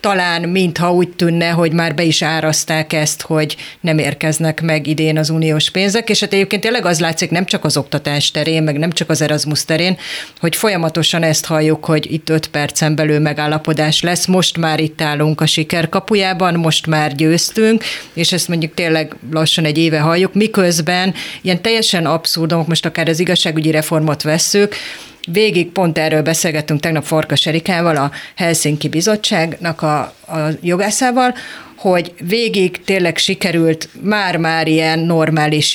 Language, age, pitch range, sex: Hungarian, 30-49, 155-180 Hz, female